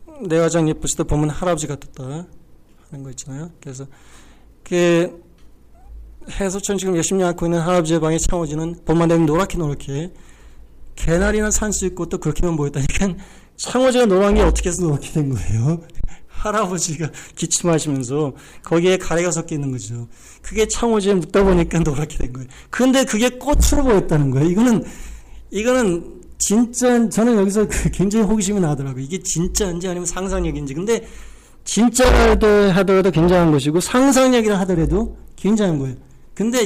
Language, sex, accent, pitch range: Korean, male, native, 155-210 Hz